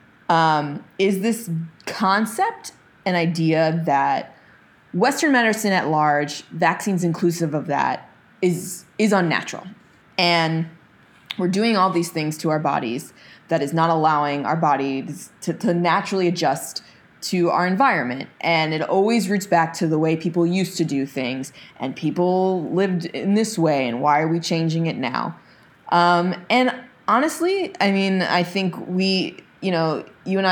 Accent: American